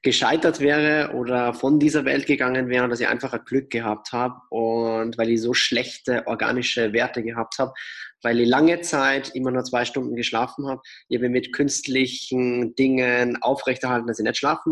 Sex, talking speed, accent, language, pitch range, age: male, 180 wpm, German, German, 120-145 Hz, 20-39